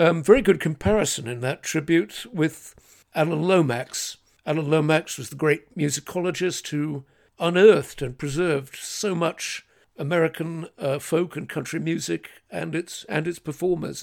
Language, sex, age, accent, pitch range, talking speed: English, male, 60-79, British, 140-180 Hz, 140 wpm